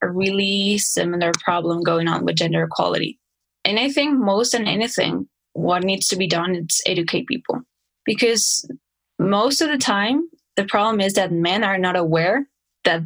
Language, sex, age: English, female, 10-29